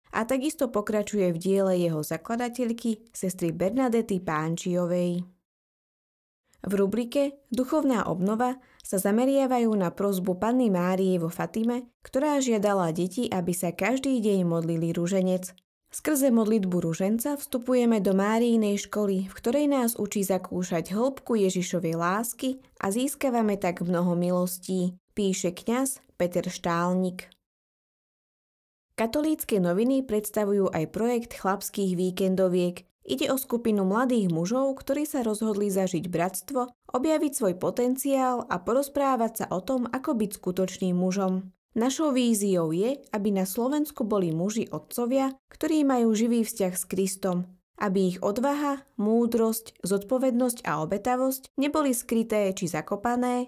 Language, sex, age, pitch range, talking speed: Slovak, female, 20-39, 185-250 Hz, 125 wpm